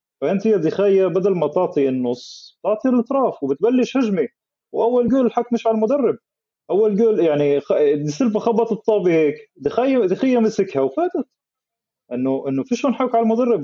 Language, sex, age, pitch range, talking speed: Arabic, male, 30-49, 150-210 Hz, 160 wpm